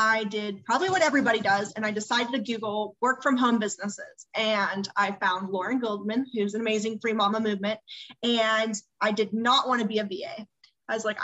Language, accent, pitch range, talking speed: English, American, 210-255 Hz, 205 wpm